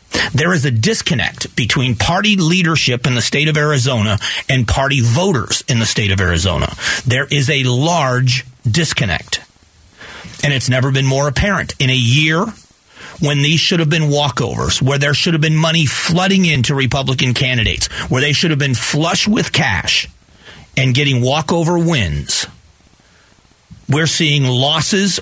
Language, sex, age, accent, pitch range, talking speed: English, male, 40-59, American, 125-160 Hz, 155 wpm